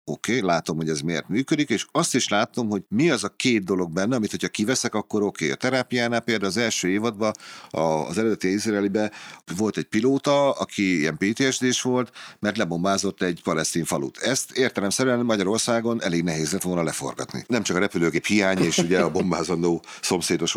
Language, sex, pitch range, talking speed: Hungarian, male, 85-125 Hz, 185 wpm